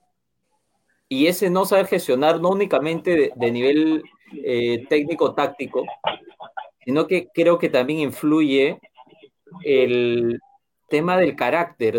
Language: Spanish